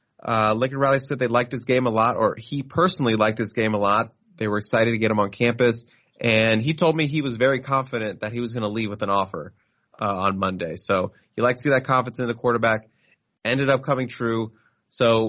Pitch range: 110-135 Hz